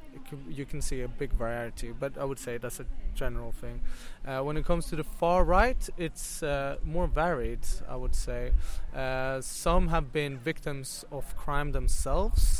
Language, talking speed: English, 175 wpm